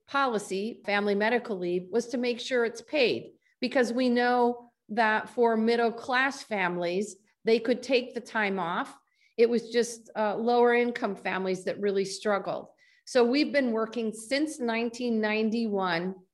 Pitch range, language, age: 210-260 Hz, English, 40-59